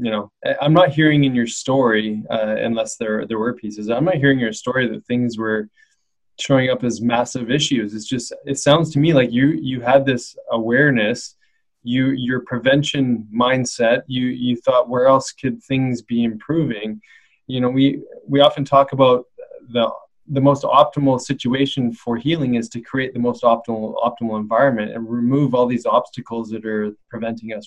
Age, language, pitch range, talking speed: 20-39, English, 120-140 Hz, 180 wpm